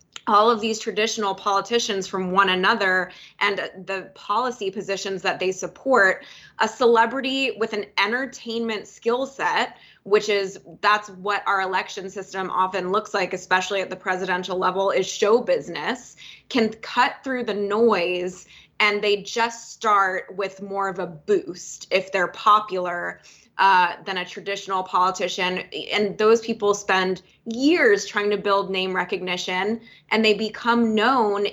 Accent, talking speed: American, 145 wpm